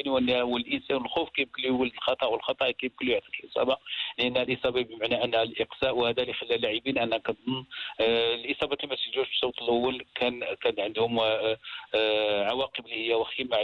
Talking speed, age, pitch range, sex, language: 170 wpm, 50-69, 120-140 Hz, male, Arabic